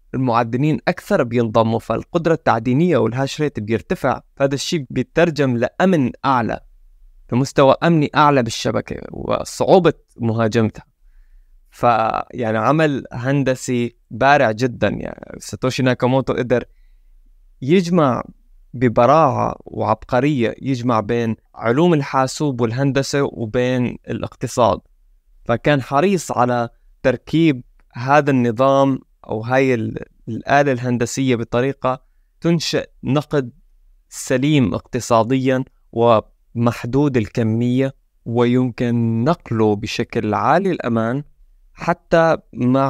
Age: 20-39